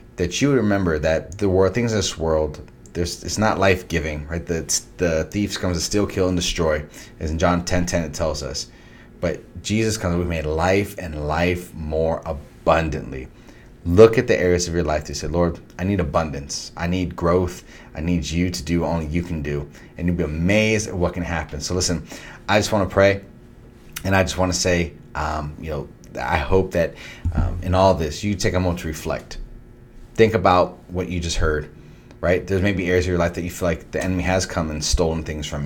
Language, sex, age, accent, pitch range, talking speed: English, male, 30-49, American, 80-95 Hz, 220 wpm